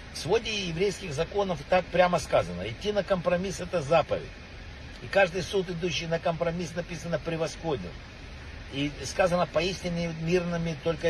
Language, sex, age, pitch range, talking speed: Russian, male, 60-79, 135-185 Hz, 135 wpm